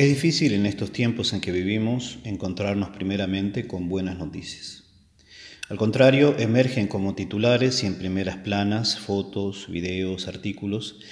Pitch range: 95-125 Hz